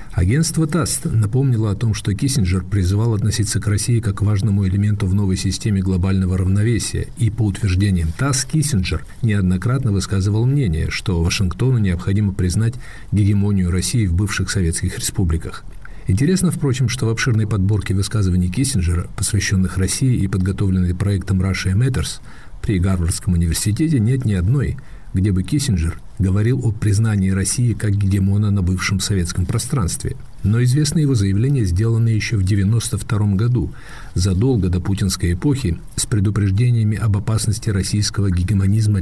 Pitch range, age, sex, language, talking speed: 95-115 Hz, 50-69, male, Russian, 140 wpm